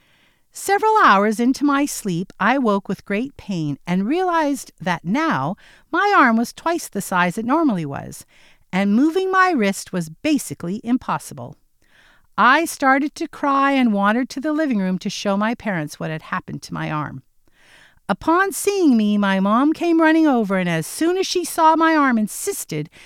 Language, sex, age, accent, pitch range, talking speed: English, female, 50-69, American, 190-300 Hz, 175 wpm